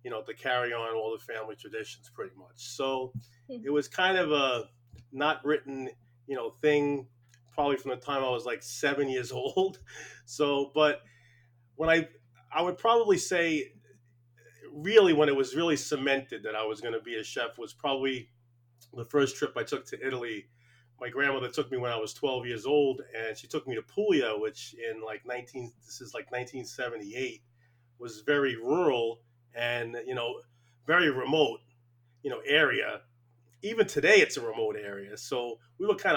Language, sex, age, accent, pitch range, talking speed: English, male, 30-49, American, 120-155 Hz, 180 wpm